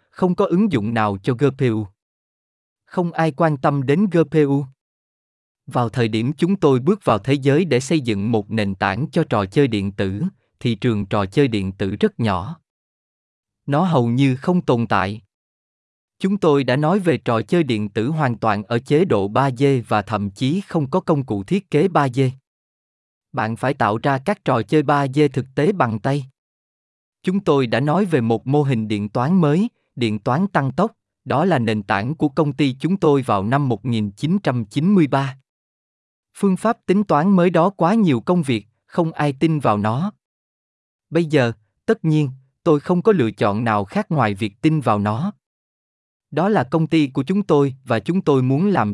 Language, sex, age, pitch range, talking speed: Vietnamese, male, 20-39, 115-165 Hz, 195 wpm